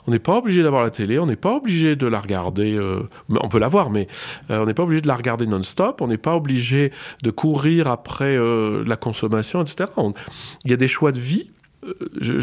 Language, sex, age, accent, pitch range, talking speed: French, male, 40-59, French, 110-150 Hz, 230 wpm